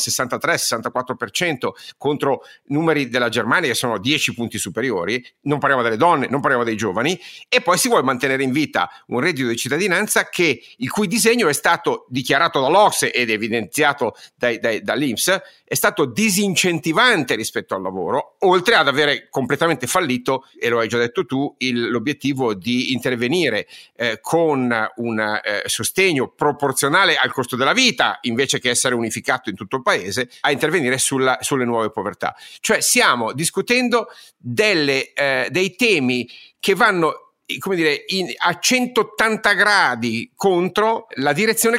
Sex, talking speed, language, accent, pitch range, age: male, 150 wpm, Italian, native, 125-195 Hz, 50-69